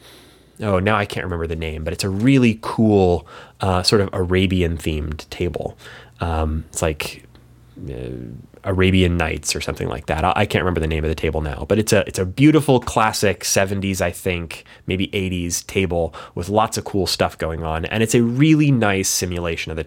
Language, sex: English, male